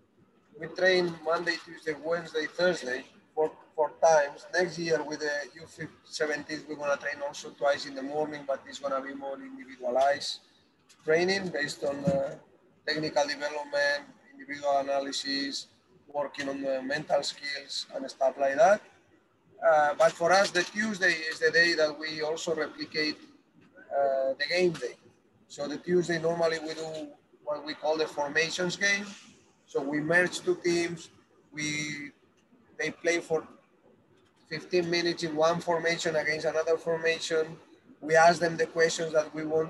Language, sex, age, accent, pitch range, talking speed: English, male, 30-49, Spanish, 150-180 Hz, 150 wpm